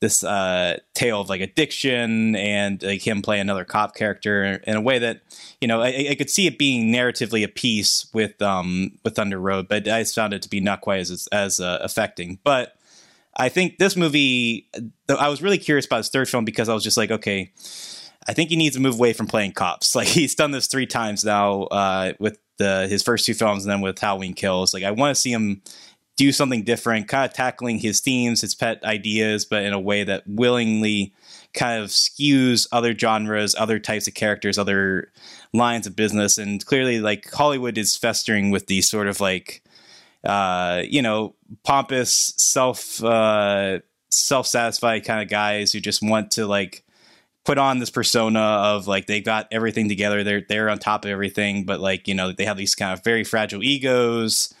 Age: 20-39